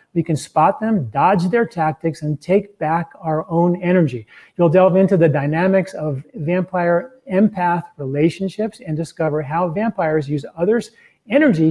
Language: English